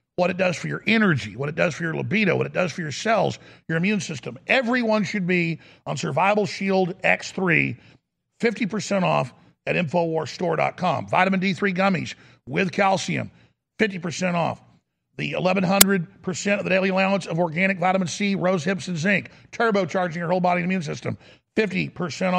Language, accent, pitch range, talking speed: English, American, 160-195 Hz, 165 wpm